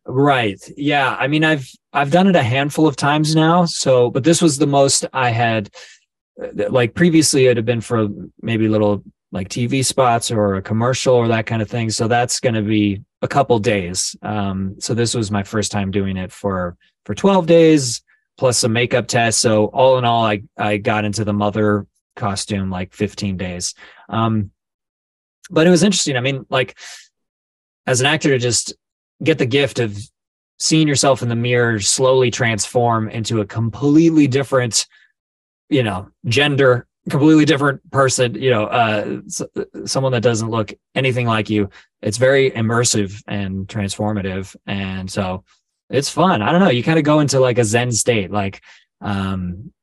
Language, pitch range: English, 105-135 Hz